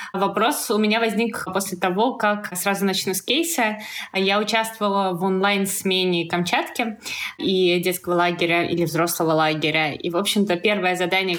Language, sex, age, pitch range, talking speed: Russian, female, 20-39, 185-225 Hz, 150 wpm